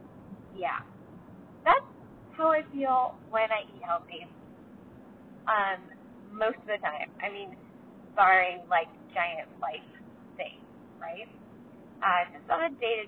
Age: 20-39